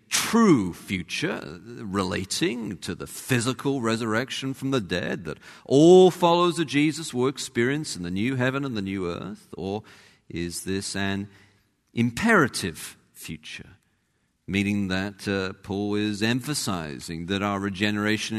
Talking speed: 130 wpm